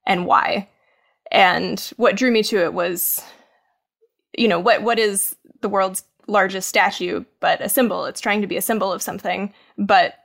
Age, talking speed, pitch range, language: 10-29, 175 wpm, 185-220 Hz, English